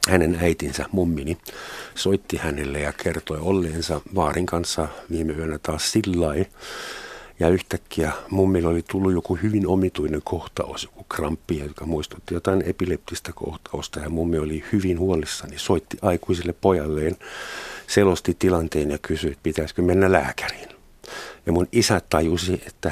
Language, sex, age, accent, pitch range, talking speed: Finnish, male, 50-69, native, 80-95 Hz, 140 wpm